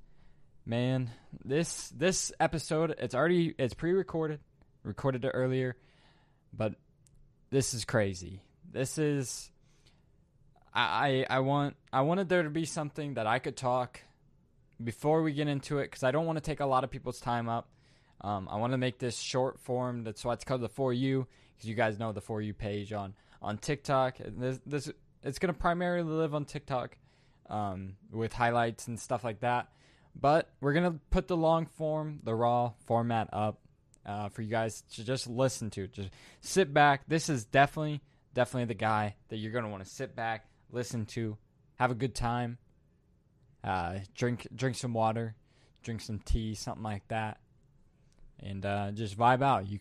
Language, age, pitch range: English, 10-29, 110-140 Hz